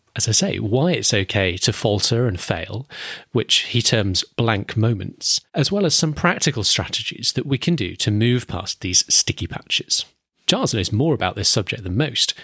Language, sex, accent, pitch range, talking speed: English, male, British, 105-140 Hz, 190 wpm